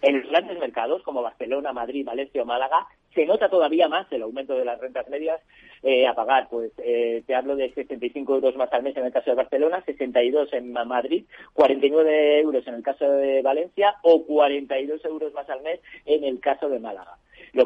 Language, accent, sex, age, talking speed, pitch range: Spanish, Spanish, male, 40-59, 195 wpm, 135-190 Hz